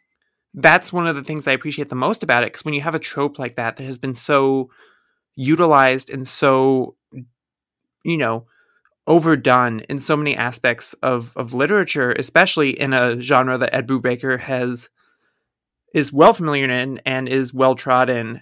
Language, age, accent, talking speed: English, 20-39, American, 170 wpm